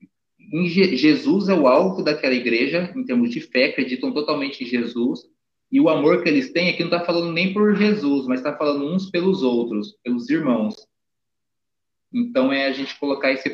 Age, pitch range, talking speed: 20-39, 120-185 Hz, 185 wpm